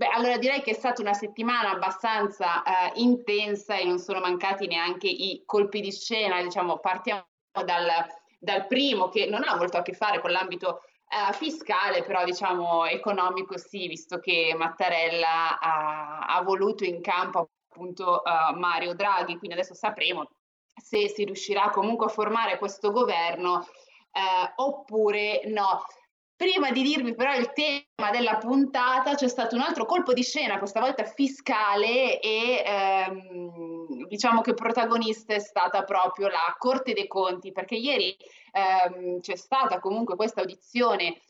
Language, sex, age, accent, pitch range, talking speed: Italian, female, 20-39, native, 180-235 Hz, 145 wpm